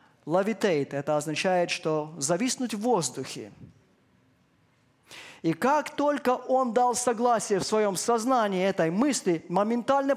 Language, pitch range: Russian, 150-195 Hz